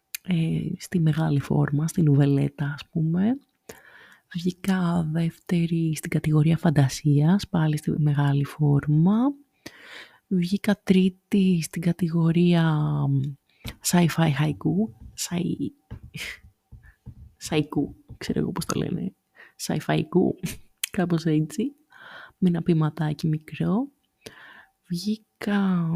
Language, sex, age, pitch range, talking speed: Greek, female, 30-49, 160-205 Hz, 90 wpm